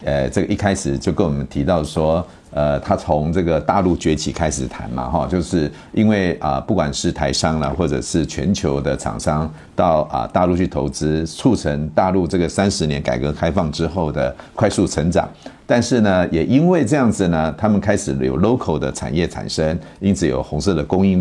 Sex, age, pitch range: male, 50-69, 75-105 Hz